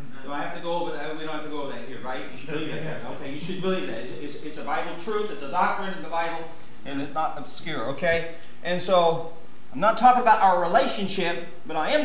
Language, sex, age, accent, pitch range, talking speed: English, male, 40-59, American, 165-205 Hz, 255 wpm